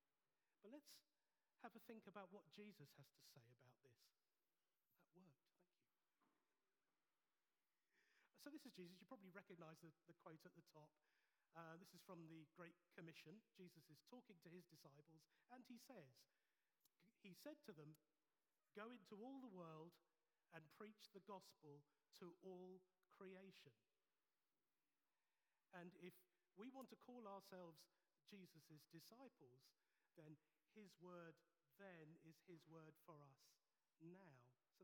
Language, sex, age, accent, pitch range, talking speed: English, male, 40-59, British, 160-215 Hz, 140 wpm